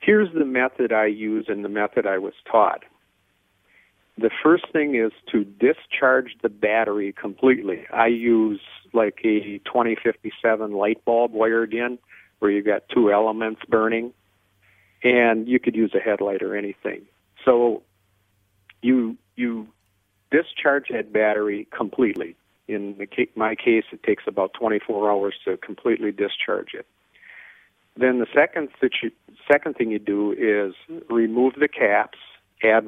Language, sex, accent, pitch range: English, male, American, 100-125 Hz